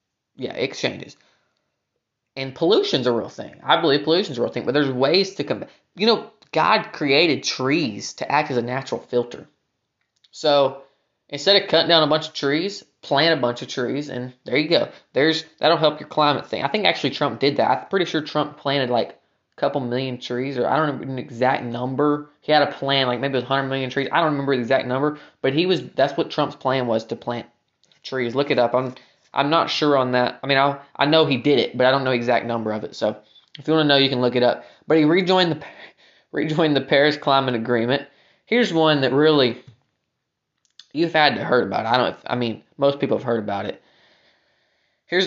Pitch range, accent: 125-150 Hz, American